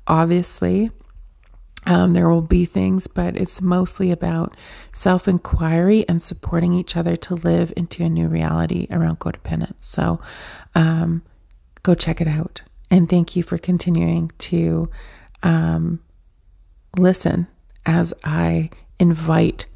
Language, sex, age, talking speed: English, female, 30-49, 120 wpm